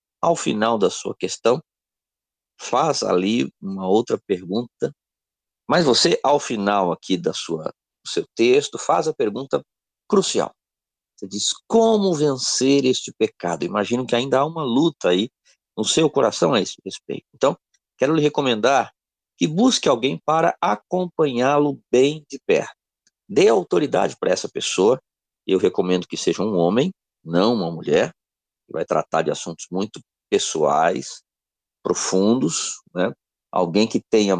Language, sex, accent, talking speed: Portuguese, male, Brazilian, 140 wpm